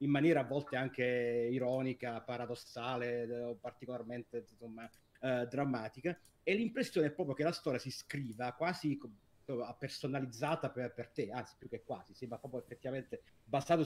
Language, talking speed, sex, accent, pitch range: Italian, 150 wpm, male, native, 120-150 Hz